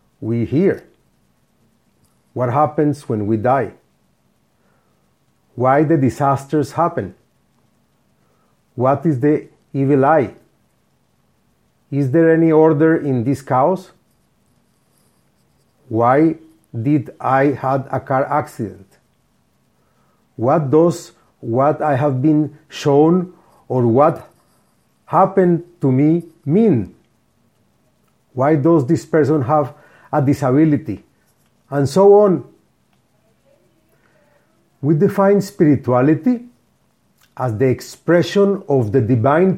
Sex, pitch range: male, 135-180 Hz